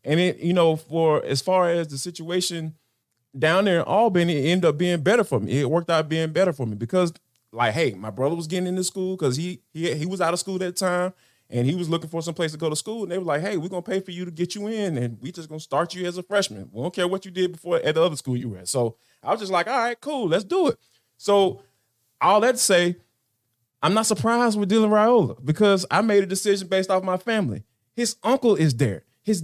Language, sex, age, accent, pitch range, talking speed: English, male, 20-39, American, 155-220 Hz, 270 wpm